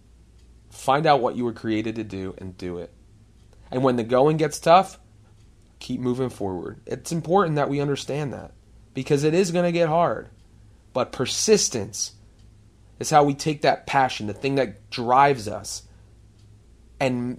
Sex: male